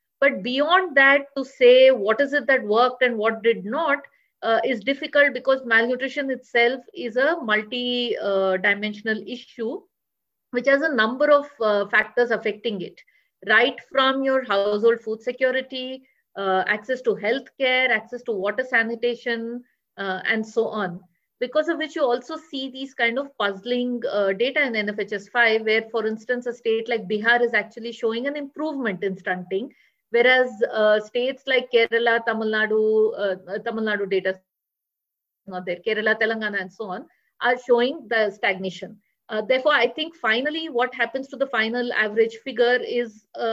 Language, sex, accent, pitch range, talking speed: English, female, Indian, 220-260 Hz, 165 wpm